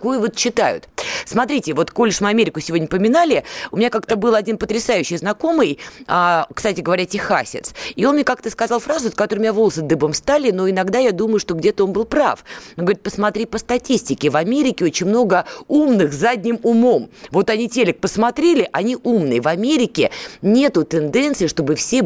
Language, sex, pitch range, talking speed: Russian, female, 170-230 Hz, 175 wpm